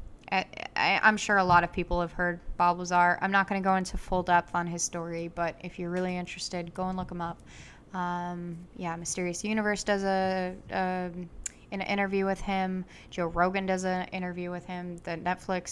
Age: 10-29